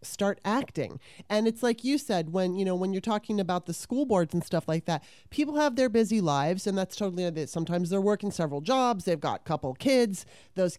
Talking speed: 230 wpm